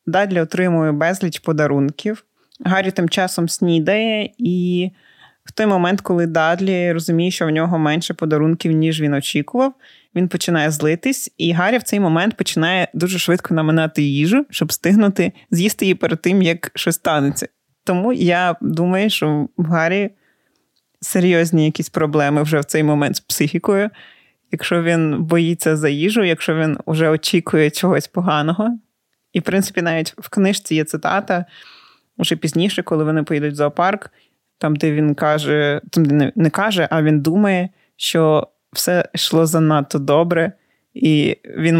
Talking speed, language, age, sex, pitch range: 150 wpm, Ukrainian, 20-39, male, 155-190 Hz